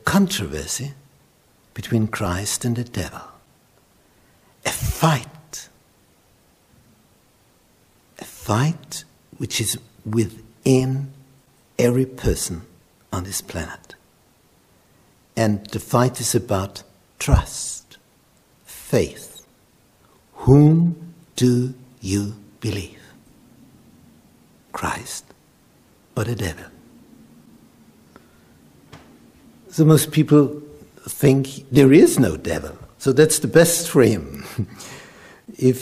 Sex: male